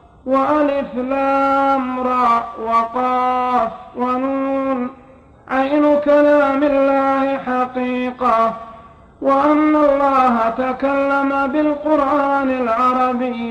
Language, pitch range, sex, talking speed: Arabic, 255-280 Hz, male, 60 wpm